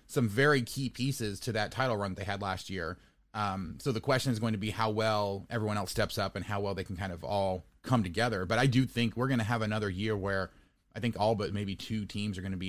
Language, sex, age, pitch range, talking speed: English, male, 30-49, 100-130 Hz, 280 wpm